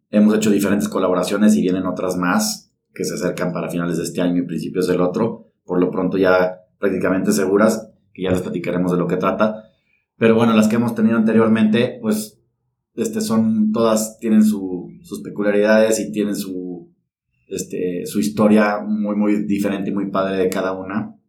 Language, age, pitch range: Spanish, 30-49, 90-110 Hz